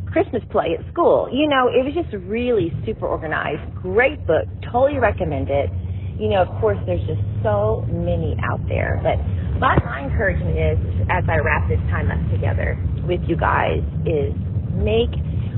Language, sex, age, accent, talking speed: English, female, 40-59, American, 165 wpm